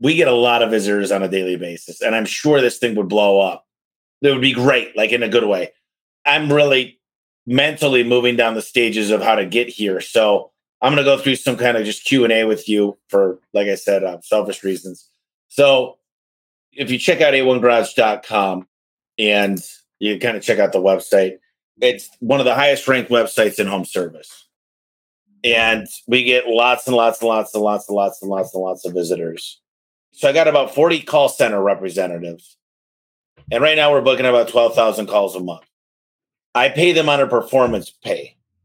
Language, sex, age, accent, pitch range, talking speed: English, male, 30-49, American, 100-135 Hz, 200 wpm